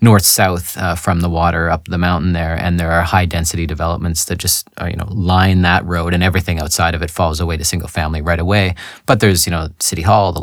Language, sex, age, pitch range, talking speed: English, male, 30-49, 90-100 Hz, 245 wpm